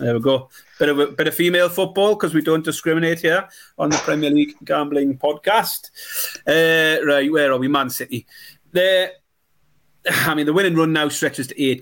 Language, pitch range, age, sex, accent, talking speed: English, 125-155 Hz, 30-49, male, British, 195 wpm